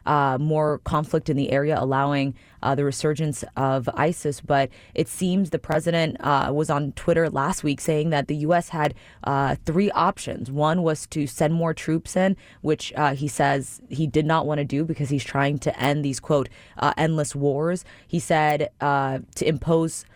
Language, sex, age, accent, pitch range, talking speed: English, female, 20-39, American, 140-165 Hz, 190 wpm